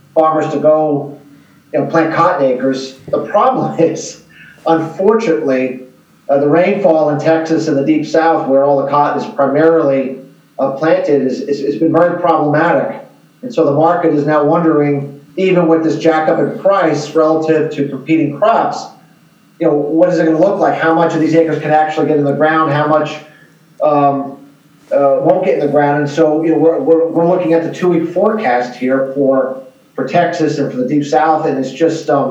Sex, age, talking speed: male, 40-59, 195 wpm